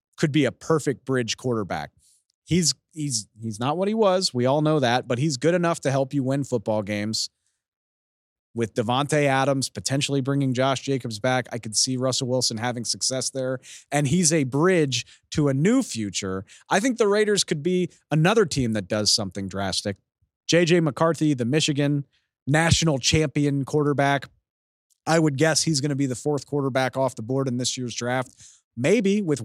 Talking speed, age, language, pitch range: 180 wpm, 30-49, English, 115-155 Hz